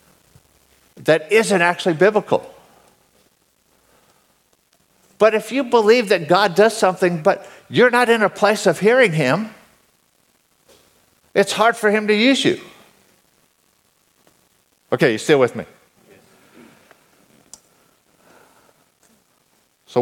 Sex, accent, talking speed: male, American, 100 wpm